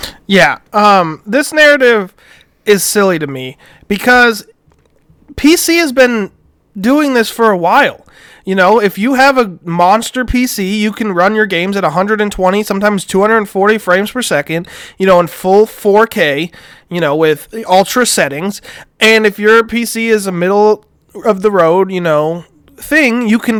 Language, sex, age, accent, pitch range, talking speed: English, male, 30-49, American, 180-230 Hz, 160 wpm